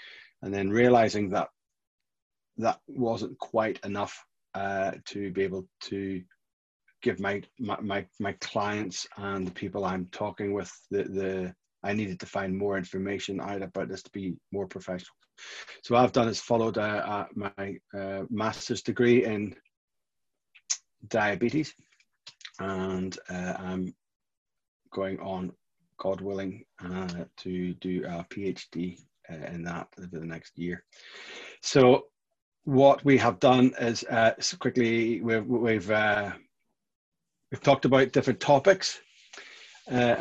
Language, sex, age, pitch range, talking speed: German, male, 30-49, 95-120 Hz, 135 wpm